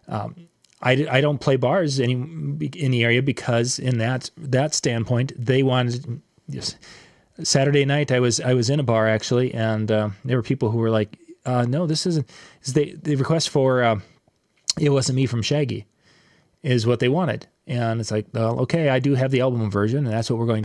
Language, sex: English, male